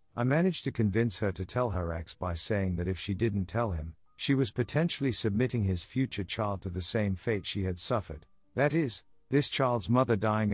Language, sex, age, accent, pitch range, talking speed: English, male, 50-69, American, 90-120 Hz, 210 wpm